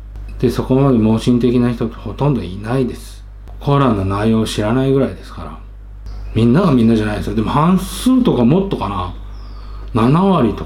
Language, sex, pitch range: Japanese, male, 100-140 Hz